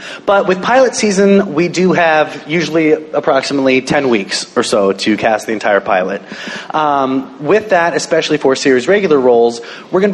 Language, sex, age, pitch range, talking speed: English, male, 30-49, 110-145 Hz, 165 wpm